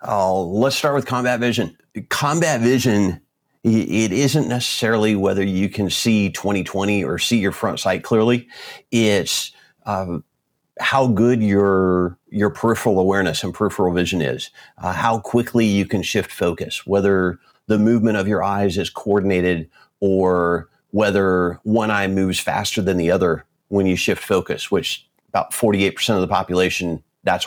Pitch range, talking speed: 90-110 Hz, 150 wpm